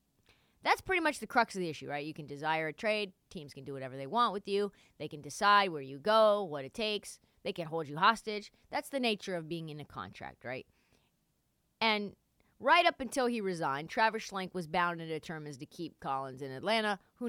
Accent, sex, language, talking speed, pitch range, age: American, female, English, 220 wpm, 160-235 Hz, 30-49